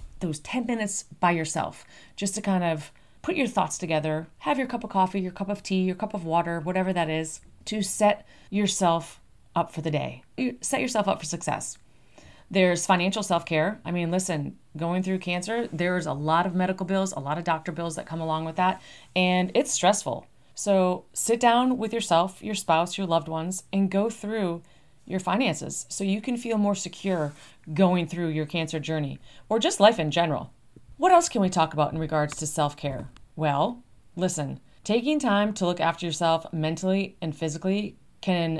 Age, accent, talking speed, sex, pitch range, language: 30-49, American, 190 wpm, female, 160-205 Hz, English